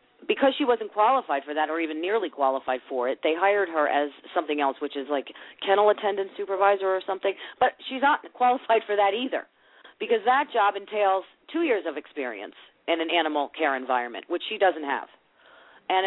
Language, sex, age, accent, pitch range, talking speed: English, female, 40-59, American, 165-230 Hz, 190 wpm